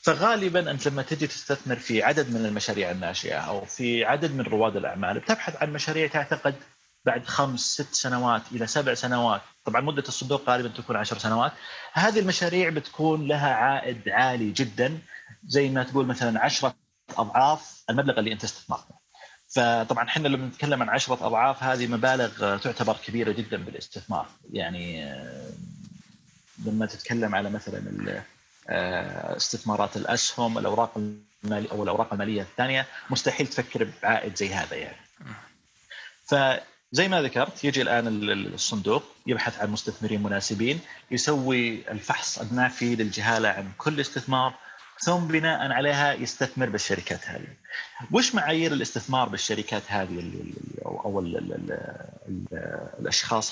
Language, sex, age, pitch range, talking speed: Arabic, male, 30-49, 110-145 Hz, 130 wpm